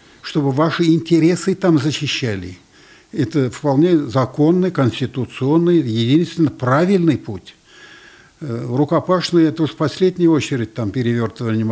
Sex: male